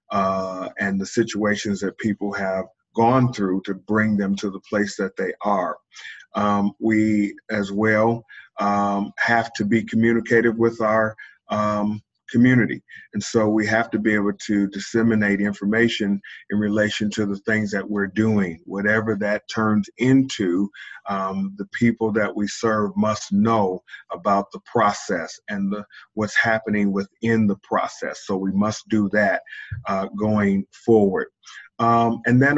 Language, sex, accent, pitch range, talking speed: English, male, American, 100-115 Hz, 150 wpm